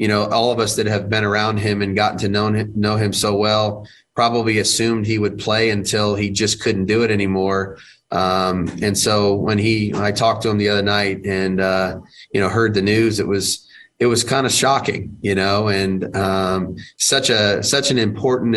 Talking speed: 215 wpm